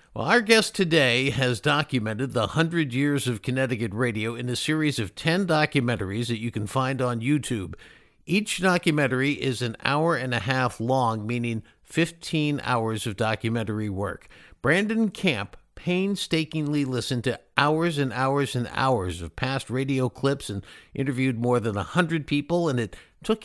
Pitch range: 115-150 Hz